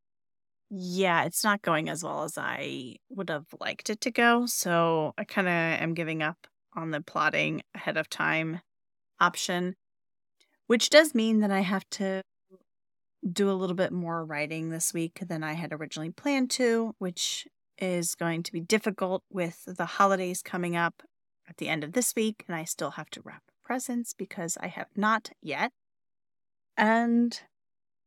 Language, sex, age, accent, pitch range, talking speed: English, female, 30-49, American, 170-215 Hz, 170 wpm